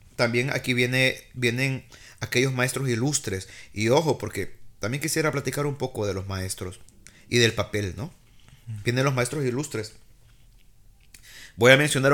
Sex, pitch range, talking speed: male, 110-135 Hz, 145 wpm